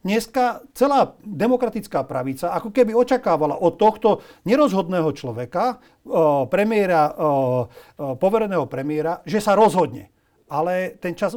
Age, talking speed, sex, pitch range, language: 40-59, 100 wpm, male, 155-210 Hz, Slovak